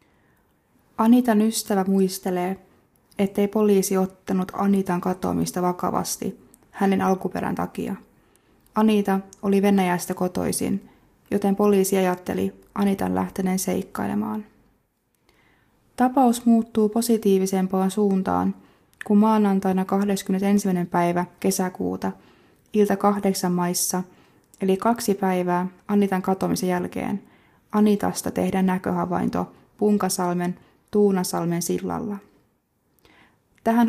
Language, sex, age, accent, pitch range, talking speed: Finnish, female, 20-39, native, 180-210 Hz, 85 wpm